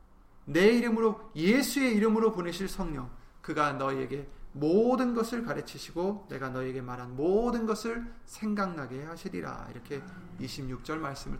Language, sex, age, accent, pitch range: Korean, male, 30-49, native, 130-190 Hz